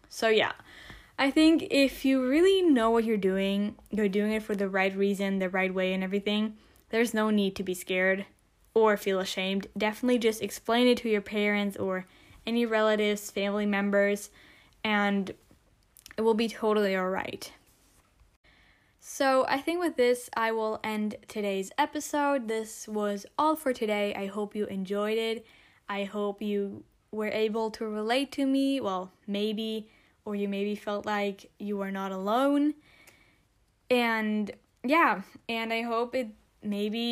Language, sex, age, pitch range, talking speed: English, female, 10-29, 200-230 Hz, 160 wpm